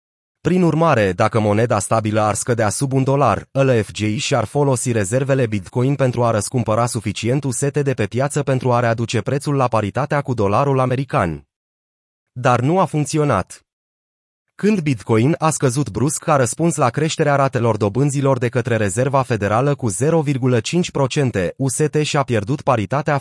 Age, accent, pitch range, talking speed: 30-49, native, 115-145 Hz, 145 wpm